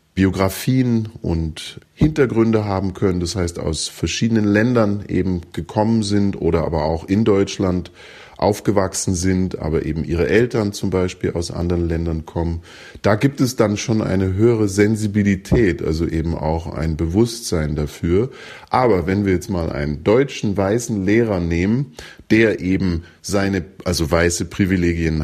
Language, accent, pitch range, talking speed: German, German, 85-105 Hz, 145 wpm